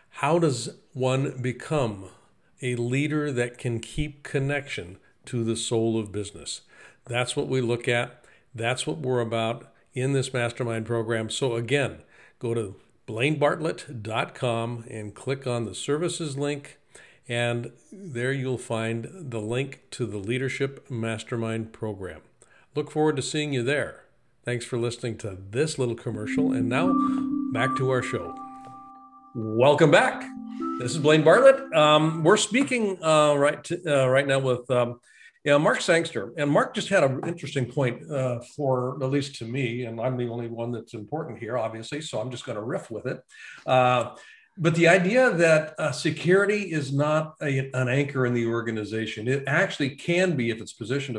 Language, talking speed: English, 160 wpm